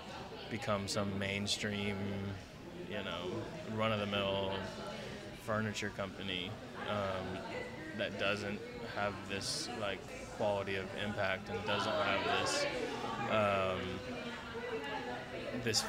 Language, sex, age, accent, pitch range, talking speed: English, male, 20-39, American, 100-115 Hz, 100 wpm